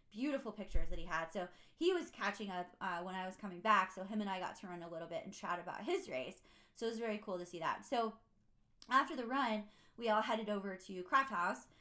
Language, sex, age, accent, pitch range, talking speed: English, female, 20-39, American, 185-225 Hz, 255 wpm